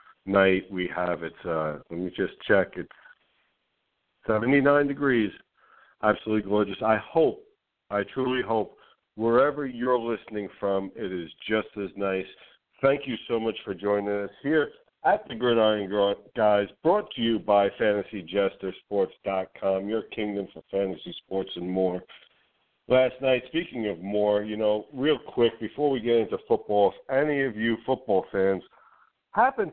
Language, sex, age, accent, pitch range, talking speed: English, male, 50-69, American, 95-115 Hz, 150 wpm